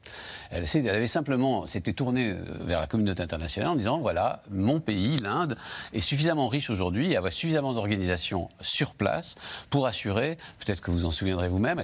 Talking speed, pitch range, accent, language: 175 wpm, 95-135 Hz, French, French